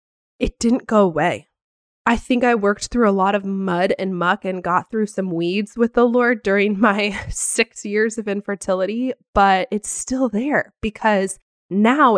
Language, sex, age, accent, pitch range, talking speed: English, female, 20-39, American, 190-230 Hz, 170 wpm